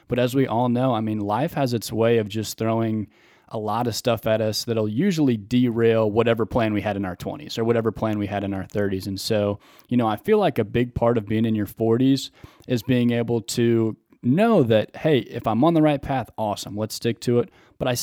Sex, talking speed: male, 245 wpm